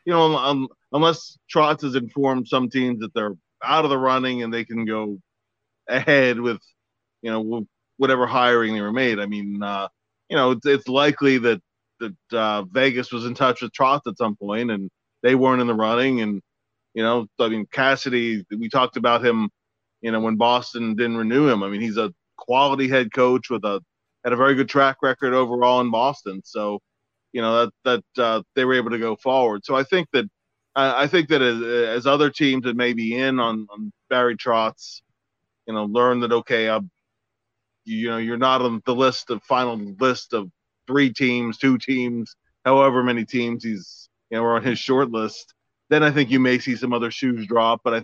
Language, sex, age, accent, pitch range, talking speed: English, male, 30-49, American, 110-130 Hz, 205 wpm